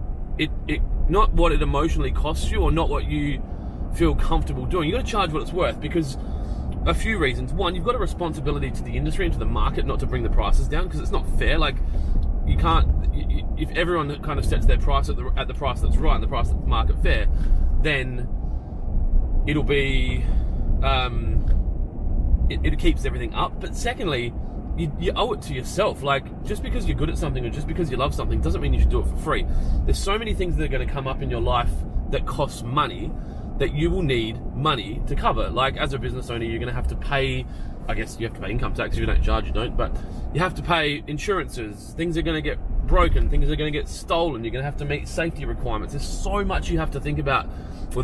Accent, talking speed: Australian, 235 wpm